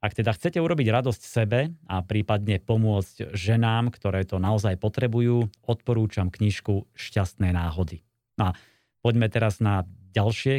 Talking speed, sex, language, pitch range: 135 wpm, male, Slovak, 100-120 Hz